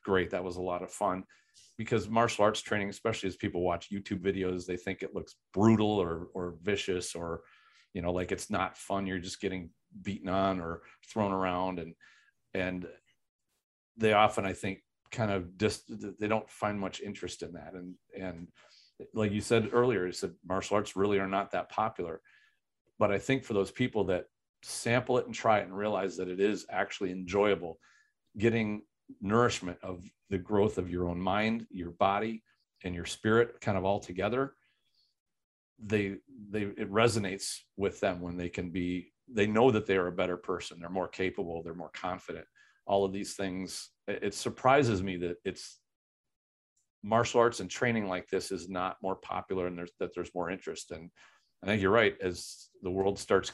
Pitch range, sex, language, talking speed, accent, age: 90-105 Hz, male, English, 185 wpm, American, 40-59